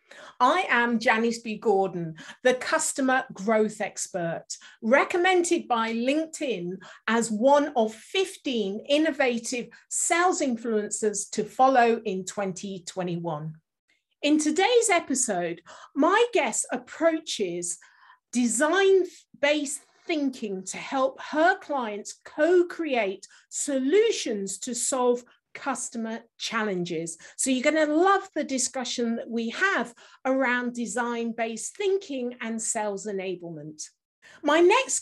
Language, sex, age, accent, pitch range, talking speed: English, female, 50-69, British, 215-315 Hz, 100 wpm